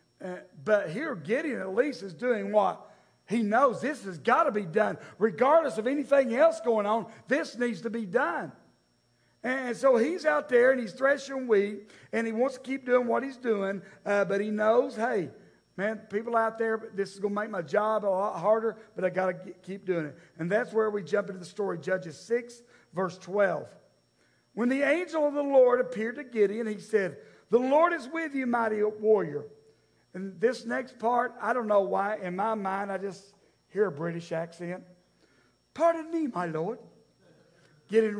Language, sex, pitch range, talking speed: English, male, 200-275 Hz, 195 wpm